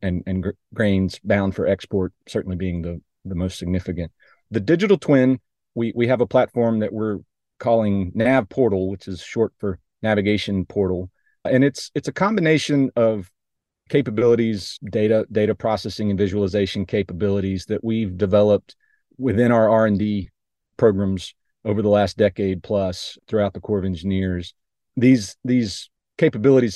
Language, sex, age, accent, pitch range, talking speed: English, male, 40-59, American, 100-115 Hz, 150 wpm